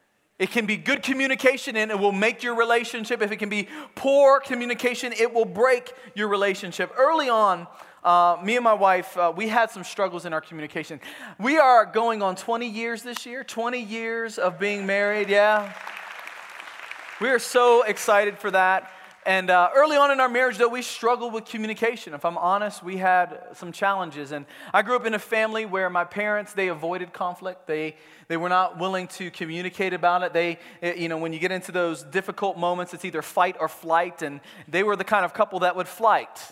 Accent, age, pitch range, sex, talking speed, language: American, 30-49, 175-225 Hz, male, 200 wpm, English